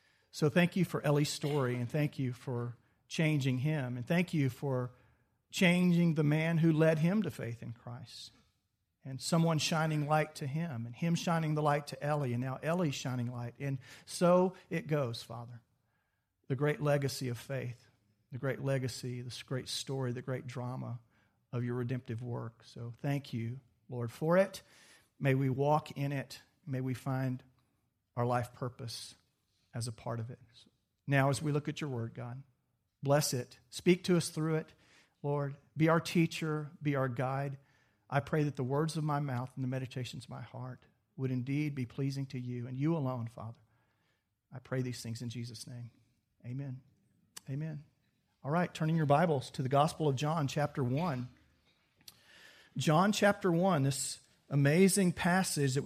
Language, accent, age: English, American, 50-69